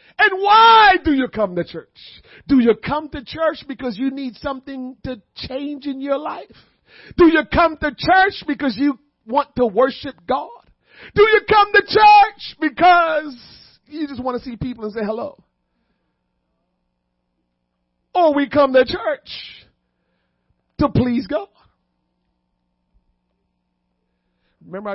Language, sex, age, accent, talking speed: English, male, 50-69, American, 135 wpm